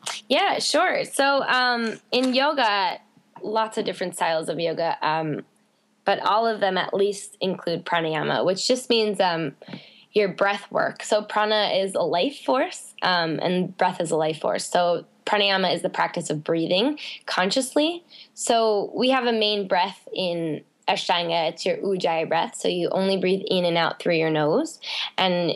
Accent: American